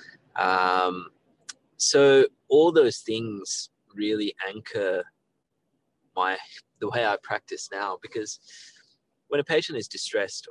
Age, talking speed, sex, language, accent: 20-39, 110 wpm, male, English, Australian